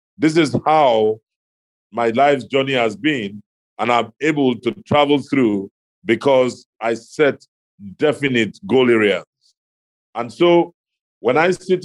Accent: Nigerian